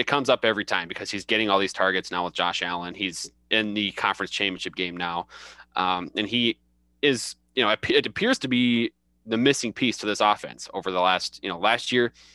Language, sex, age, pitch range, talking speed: English, male, 20-39, 85-100 Hz, 220 wpm